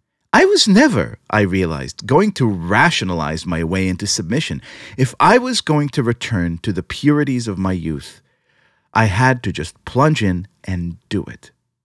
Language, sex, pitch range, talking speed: English, male, 95-145 Hz, 165 wpm